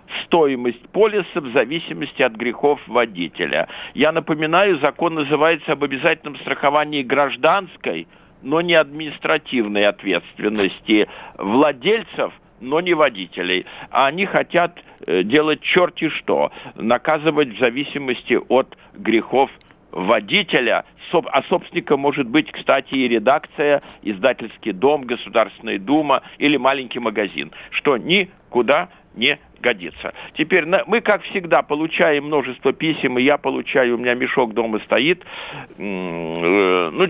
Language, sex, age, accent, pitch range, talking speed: Russian, male, 50-69, native, 130-180 Hz, 110 wpm